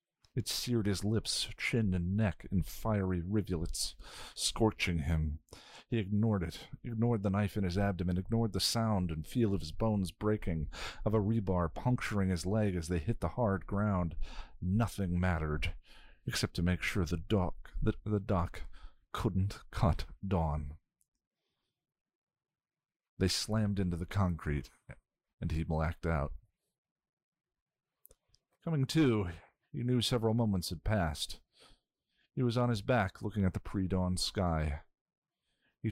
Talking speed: 145 wpm